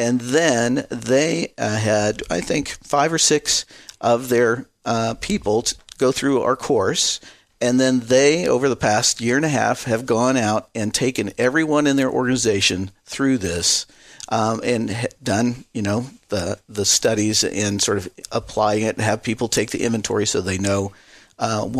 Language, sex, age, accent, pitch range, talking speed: English, male, 50-69, American, 105-125 Hz, 175 wpm